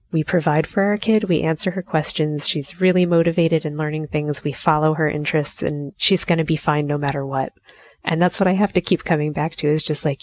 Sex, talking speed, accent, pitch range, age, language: female, 240 wpm, American, 155-205 Hz, 20-39, English